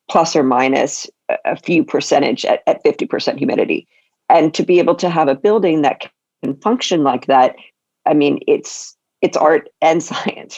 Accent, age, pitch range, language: American, 40-59, 145-175 Hz, English